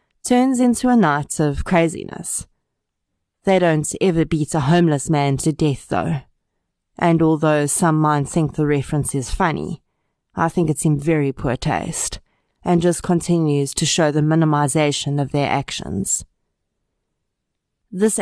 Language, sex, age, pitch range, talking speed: English, female, 30-49, 145-175 Hz, 140 wpm